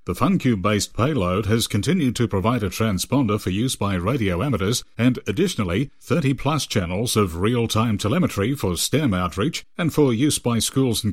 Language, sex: English, male